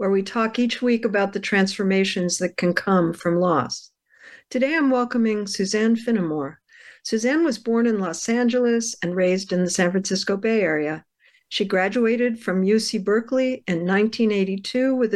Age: 60-79